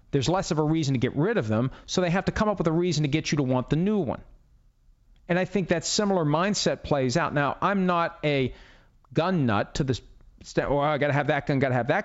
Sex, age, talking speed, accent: male, 40-59, 275 wpm, American